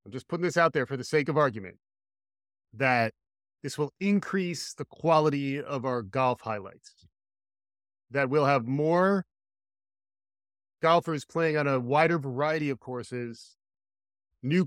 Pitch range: 125-165 Hz